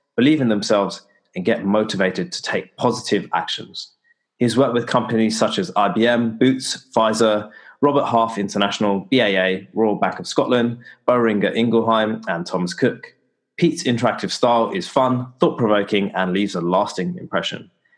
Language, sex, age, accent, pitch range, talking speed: English, male, 20-39, British, 100-130 Hz, 145 wpm